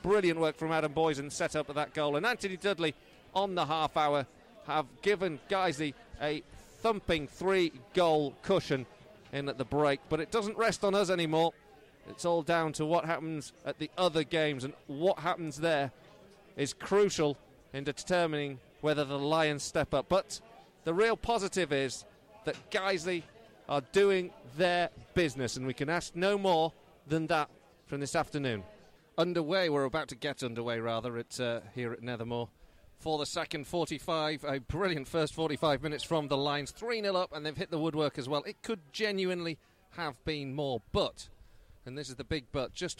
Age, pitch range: 40-59, 130-170 Hz